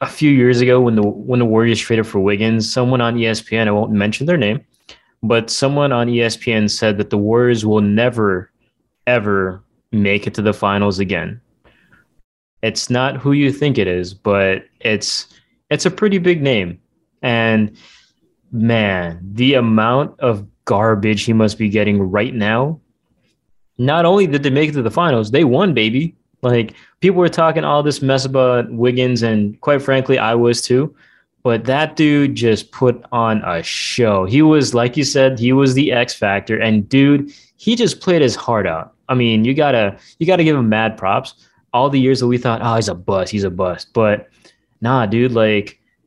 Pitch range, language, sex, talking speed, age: 105-135 Hz, English, male, 190 wpm, 20-39